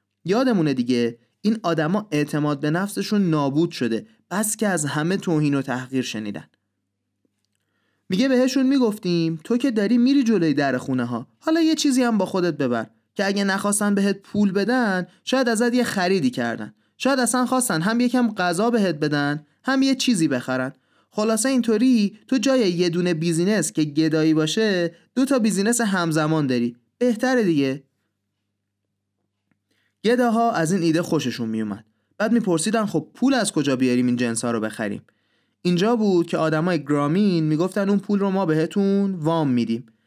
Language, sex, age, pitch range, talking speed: Persian, male, 30-49, 140-215 Hz, 160 wpm